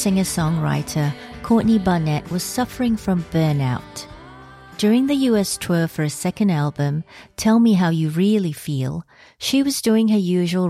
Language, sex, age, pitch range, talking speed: English, female, 50-69, 155-215 Hz, 145 wpm